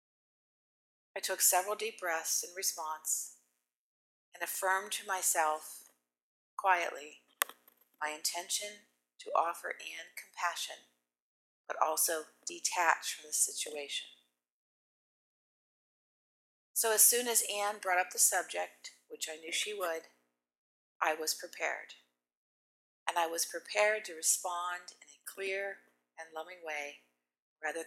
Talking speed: 115 wpm